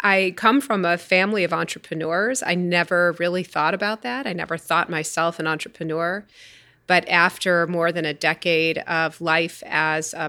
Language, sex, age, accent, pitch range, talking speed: English, female, 30-49, American, 155-180 Hz, 170 wpm